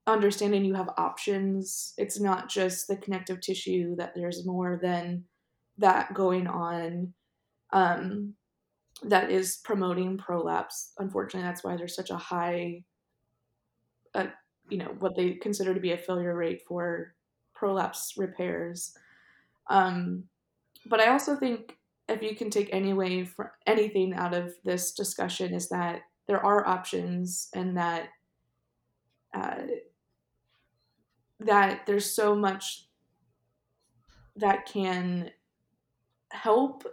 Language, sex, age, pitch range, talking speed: English, female, 20-39, 175-205 Hz, 120 wpm